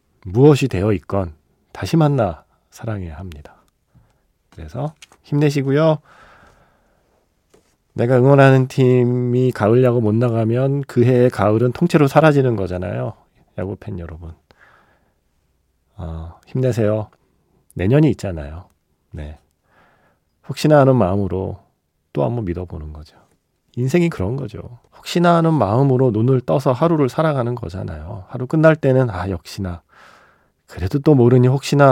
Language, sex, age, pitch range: Korean, male, 40-59, 95-135 Hz